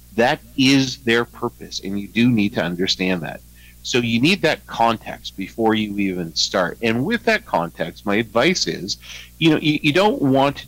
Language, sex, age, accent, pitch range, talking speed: English, male, 50-69, American, 85-120 Hz, 185 wpm